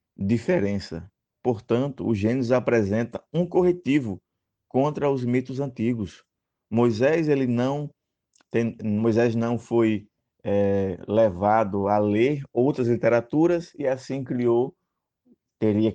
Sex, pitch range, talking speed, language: male, 105-125 Hz, 105 wpm, Portuguese